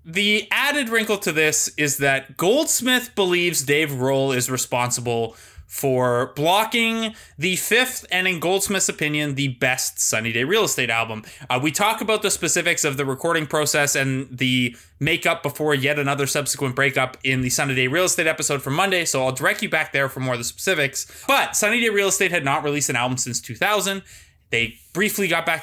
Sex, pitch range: male, 130-180 Hz